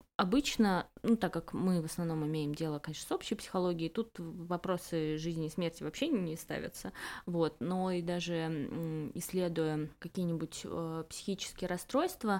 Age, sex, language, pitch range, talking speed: 20-39, female, Russian, 155-185 Hz, 145 wpm